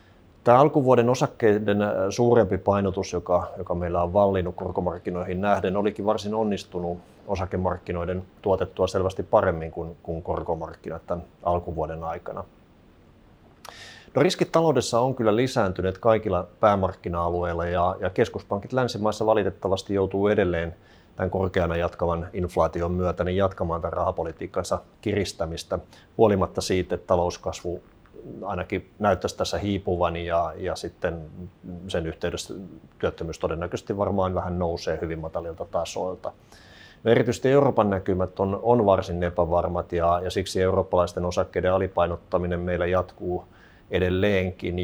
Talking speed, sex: 115 wpm, male